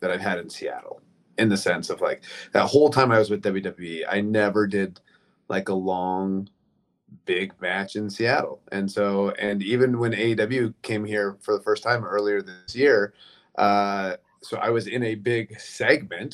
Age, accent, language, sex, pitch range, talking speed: 30-49, American, English, male, 100-110 Hz, 185 wpm